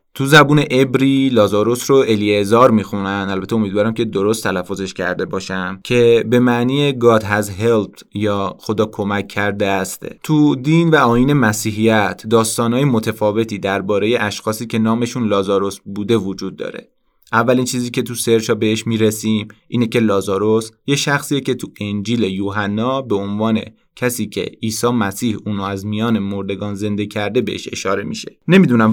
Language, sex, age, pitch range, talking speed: Persian, male, 30-49, 100-125 Hz, 150 wpm